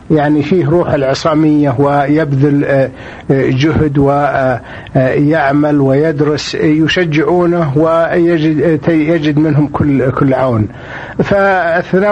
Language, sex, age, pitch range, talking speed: Arabic, male, 50-69, 130-155 Hz, 70 wpm